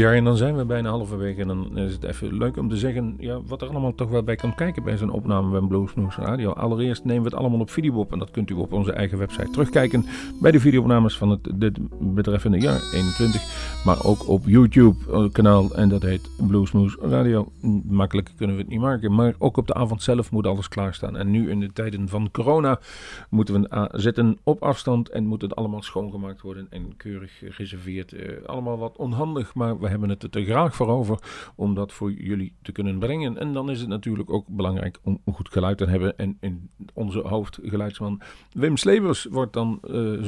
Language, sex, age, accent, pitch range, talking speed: Dutch, male, 40-59, Dutch, 100-125 Hz, 210 wpm